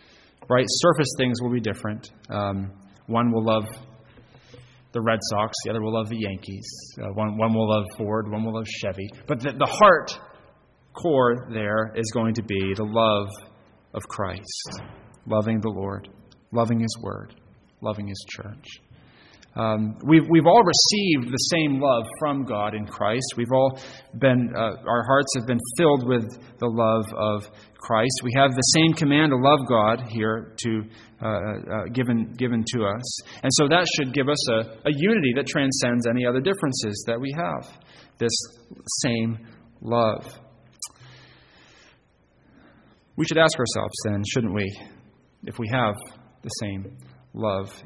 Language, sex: English, male